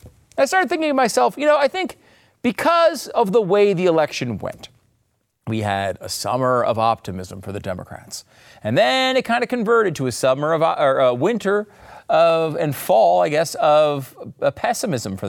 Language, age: English, 30-49